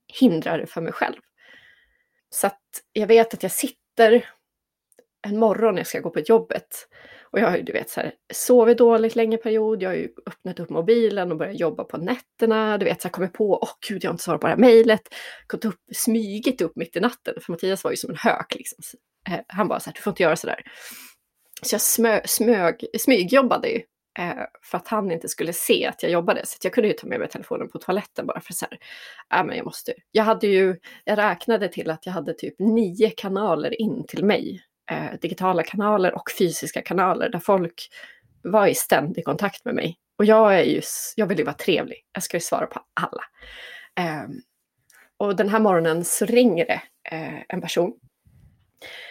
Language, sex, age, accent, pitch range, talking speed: Swedish, female, 20-39, native, 185-230 Hz, 210 wpm